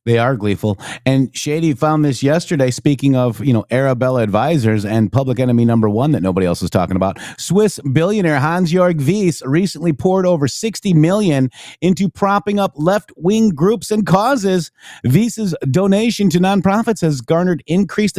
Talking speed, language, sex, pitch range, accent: 160 wpm, English, male, 140-190 Hz, American